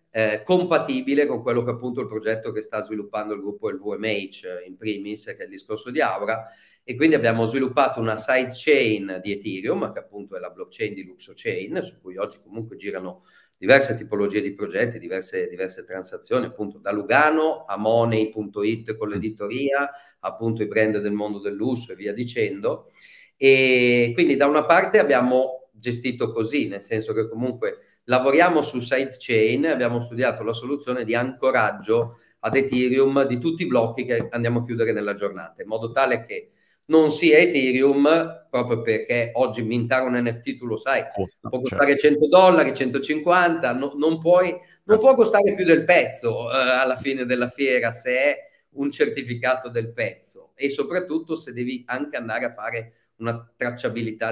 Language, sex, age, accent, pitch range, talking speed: Italian, male, 40-59, native, 110-145 Hz, 165 wpm